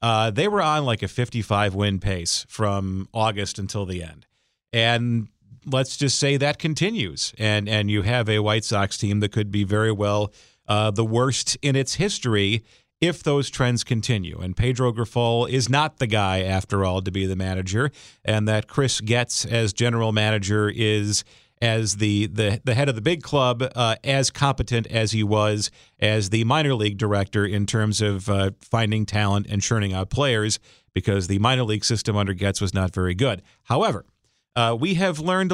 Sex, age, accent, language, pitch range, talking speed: male, 40-59, American, English, 105-130 Hz, 185 wpm